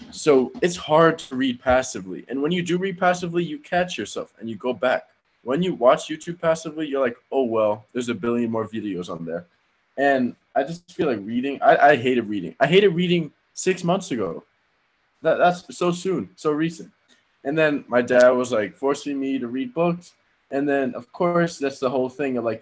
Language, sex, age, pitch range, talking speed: English, male, 20-39, 120-150 Hz, 205 wpm